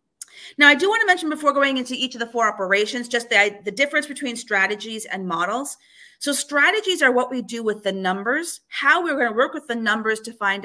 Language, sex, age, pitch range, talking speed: English, female, 40-59, 195-260 Hz, 230 wpm